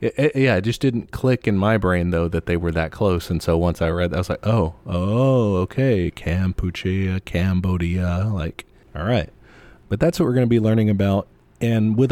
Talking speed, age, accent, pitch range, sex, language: 210 wpm, 30-49, American, 90-110 Hz, male, English